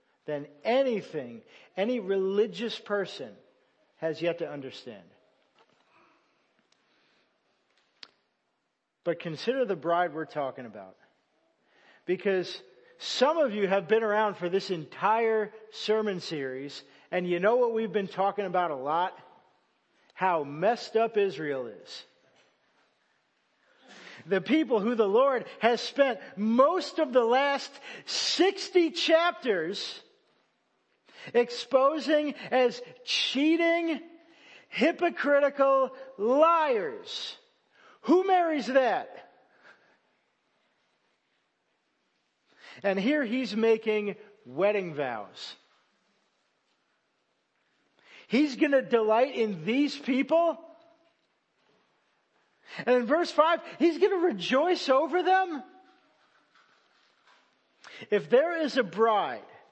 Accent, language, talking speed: American, English, 90 wpm